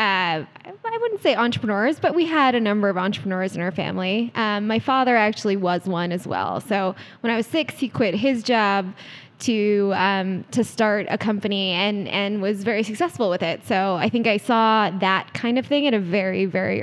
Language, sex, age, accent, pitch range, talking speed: English, female, 10-29, American, 200-255 Hz, 205 wpm